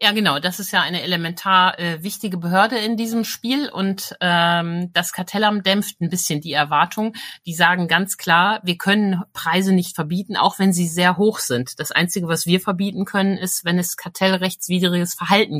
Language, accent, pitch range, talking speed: German, German, 165-190 Hz, 185 wpm